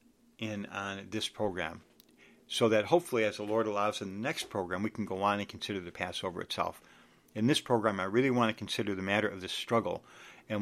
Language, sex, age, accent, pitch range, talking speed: English, male, 60-79, American, 100-125 Hz, 215 wpm